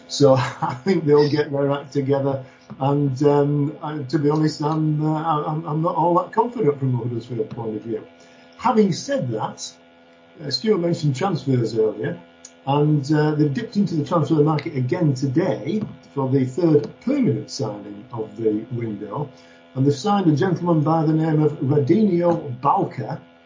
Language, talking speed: English, 165 wpm